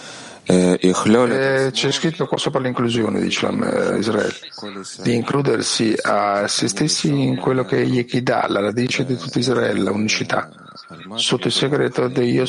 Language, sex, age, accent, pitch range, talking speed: Italian, male, 50-69, native, 125-160 Hz, 145 wpm